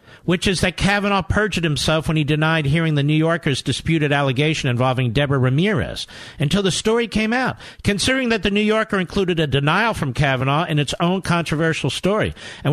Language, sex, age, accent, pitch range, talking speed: English, male, 50-69, American, 120-175 Hz, 185 wpm